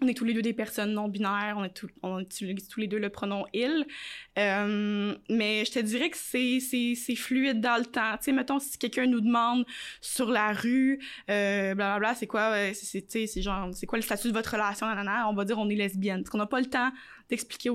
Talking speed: 245 wpm